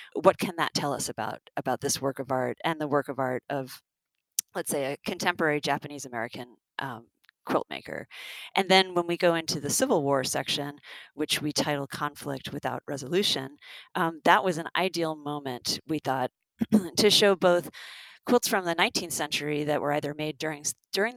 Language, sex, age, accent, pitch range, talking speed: English, female, 40-59, American, 140-175 Hz, 180 wpm